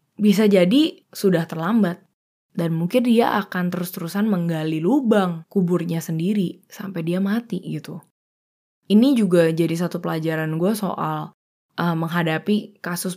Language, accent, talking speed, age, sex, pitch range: Indonesian, native, 125 wpm, 20-39, female, 175-240 Hz